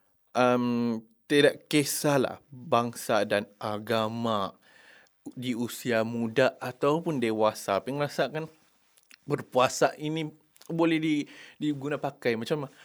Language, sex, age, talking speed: English, male, 20-39, 95 wpm